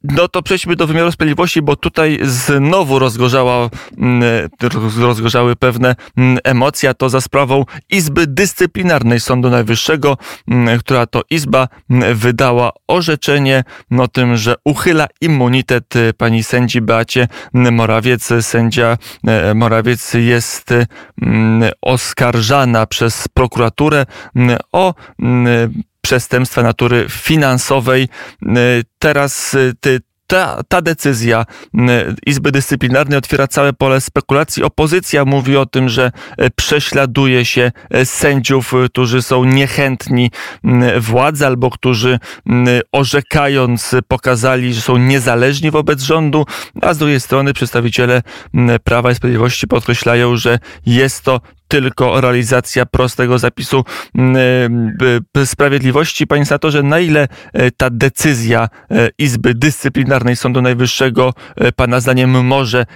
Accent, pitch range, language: native, 120-140 Hz, Polish